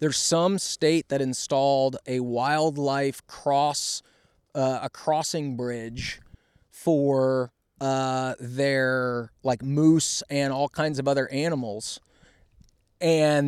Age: 20-39